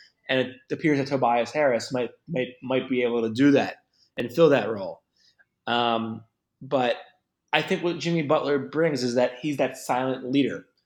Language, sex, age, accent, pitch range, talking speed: English, male, 20-39, American, 130-150 Hz, 175 wpm